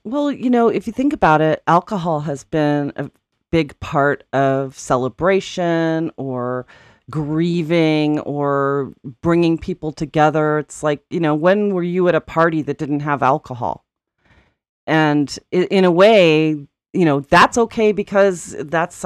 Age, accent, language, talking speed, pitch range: 40-59, American, English, 145 wpm, 140-170 Hz